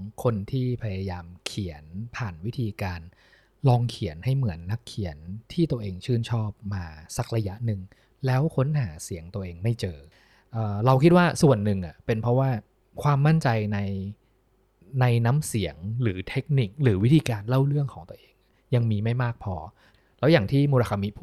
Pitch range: 100-130 Hz